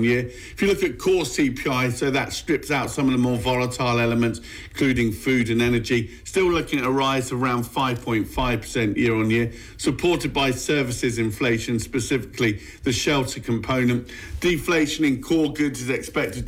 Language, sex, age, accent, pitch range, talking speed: English, male, 50-69, British, 120-145 Hz, 170 wpm